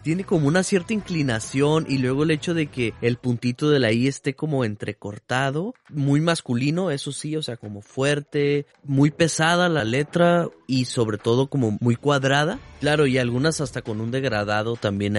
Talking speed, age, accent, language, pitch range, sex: 180 wpm, 30-49, Mexican, Spanish, 105-140 Hz, male